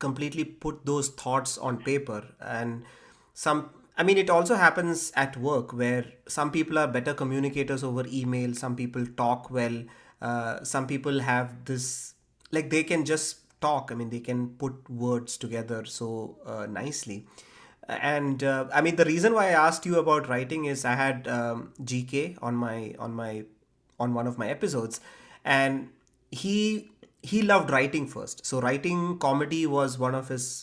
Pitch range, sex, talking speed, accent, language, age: 120-145 Hz, male, 170 wpm, Indian, English, 30-49